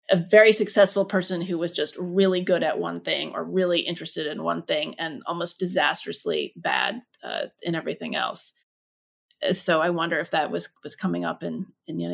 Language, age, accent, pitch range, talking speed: English, 30-49, American, 185-250 Hz, 185 wpm